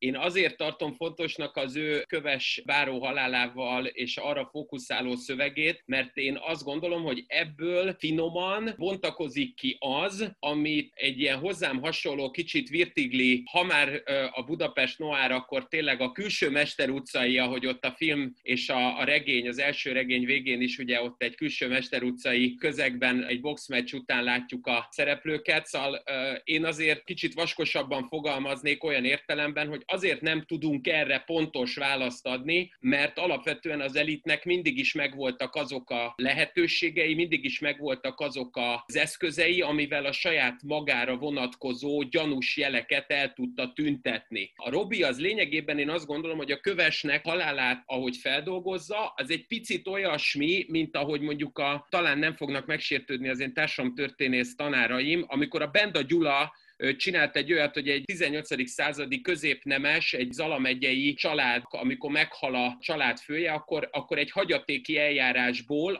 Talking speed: 150 wpm